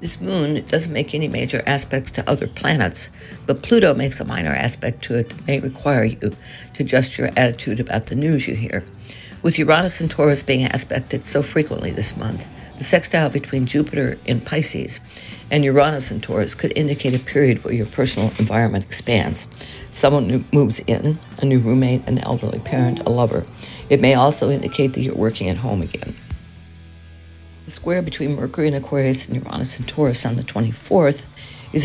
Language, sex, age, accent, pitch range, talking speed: English, female, 60-79, American, 110-145 Hz, 175 wpm